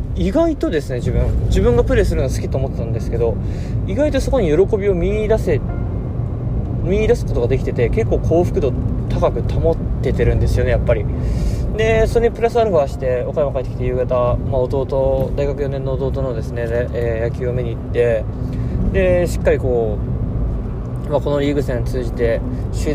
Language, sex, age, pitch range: Japanese, male, 20-39, 115-130 Hz